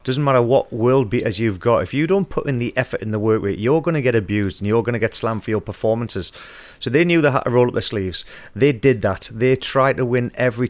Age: 30-49